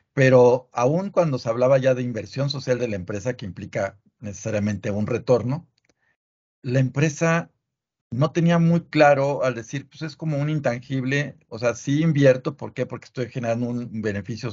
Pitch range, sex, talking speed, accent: 115-135 Hz, male, 170 wpm, Mexican